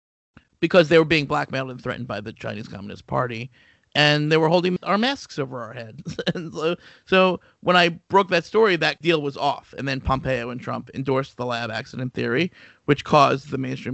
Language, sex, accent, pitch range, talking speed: English, male, American, 140-180 Hz, 200 wpm